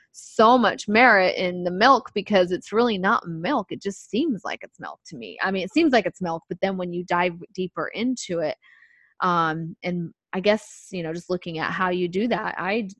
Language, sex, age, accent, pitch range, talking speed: English, female, 20-39, American, 175-215 Hz, 220 wpm